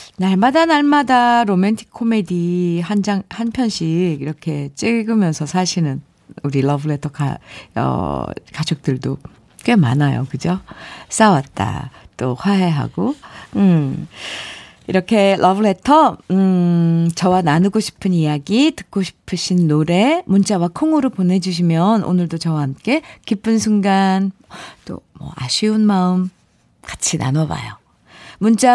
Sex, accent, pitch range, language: female, native, 155-220 Hz, Korean